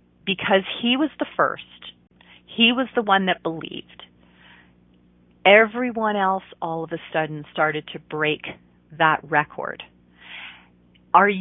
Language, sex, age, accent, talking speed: English, female, 40-59, American, 120 wpm